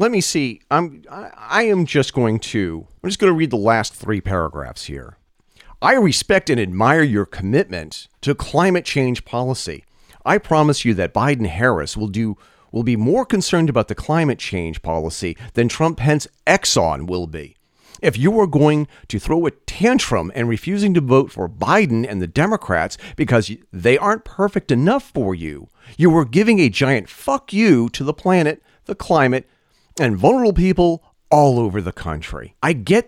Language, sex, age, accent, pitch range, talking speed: English, male, 40-59, American, 105-170 Hz, 175 wpm